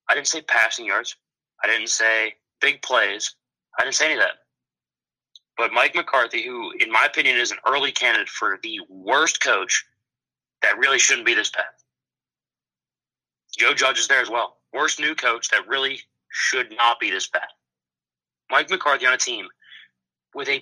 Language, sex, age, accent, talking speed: English, male, 30-49, American, 175 wpm